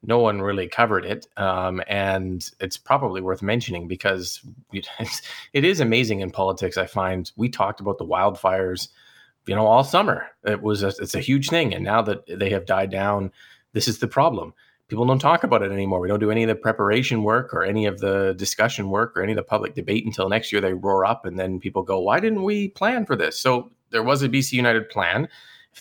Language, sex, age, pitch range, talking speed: English, male, 30-49, 95-110 Hz, 225 wpm